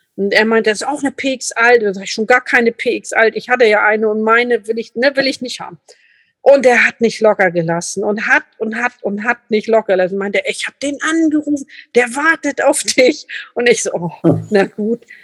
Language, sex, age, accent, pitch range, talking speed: German, female, 50-69, German, 220-280 Hz, 230 wpm